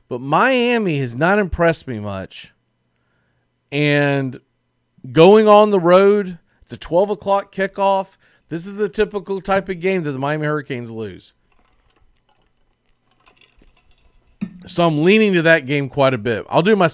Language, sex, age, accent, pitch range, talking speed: English, male, 40-59, American, 110-150 Hz, 140 wpm